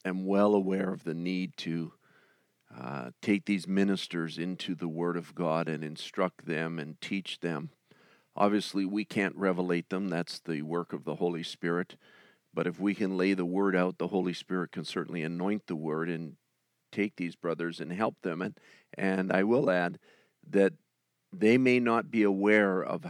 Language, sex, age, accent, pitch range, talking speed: English, male, 50-69, American, 85-100 Hz, 180 wpm